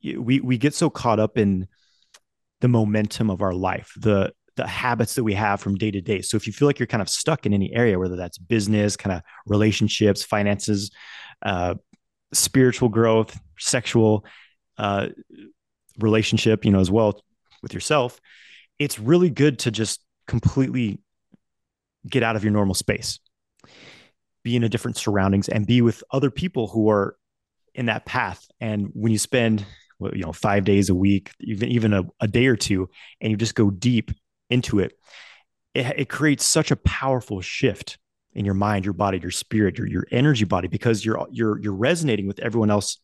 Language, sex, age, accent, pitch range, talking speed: English, male, 30-49, American, 100-120 Hz, 180 wpm